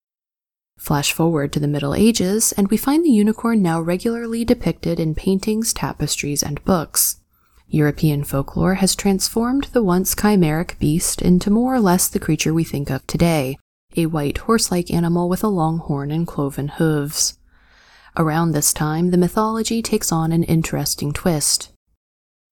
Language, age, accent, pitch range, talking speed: English, 20-39, American, 145-200 Hz, 155 wpm